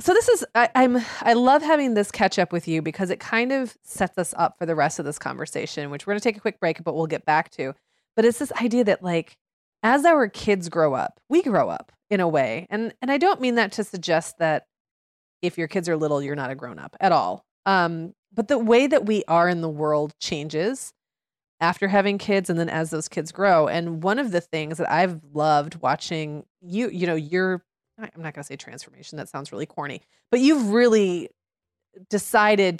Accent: American